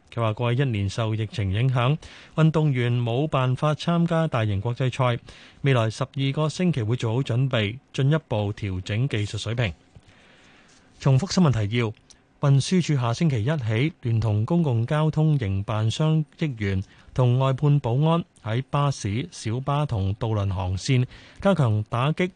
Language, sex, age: Chinese, male, 30-49